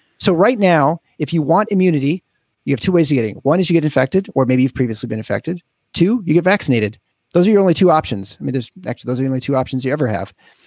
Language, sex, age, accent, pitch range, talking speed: English, male, 40-59, American, 130-170 Hz, 270 wpm